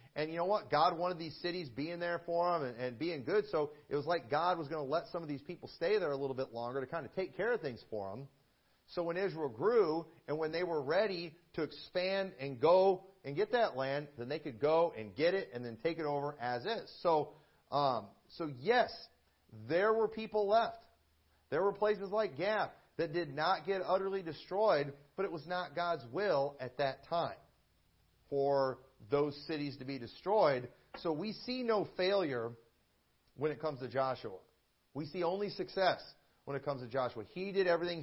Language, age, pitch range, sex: English, 40-59, 130-180 Hz, male